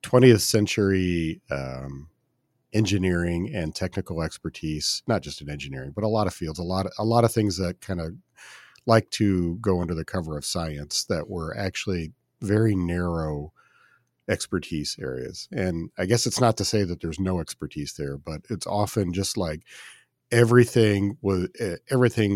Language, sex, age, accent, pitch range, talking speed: English, male, 40-59, American, 80-100 Hz, 155 wpm